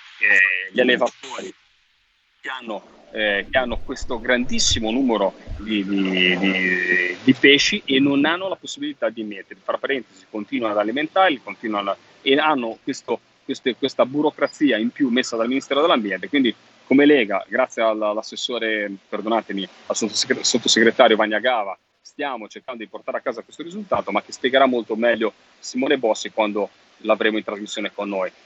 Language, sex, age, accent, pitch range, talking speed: Italian, male, 30-49, native, 100-135 Hz, 150 wpm